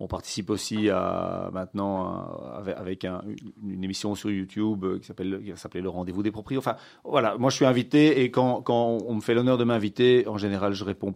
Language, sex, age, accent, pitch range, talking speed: French, male, 40-59, French, 100-135 Hz, 205 wpm